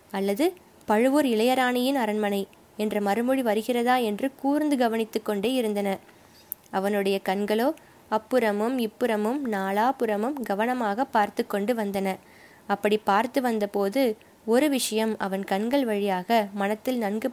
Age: 20-39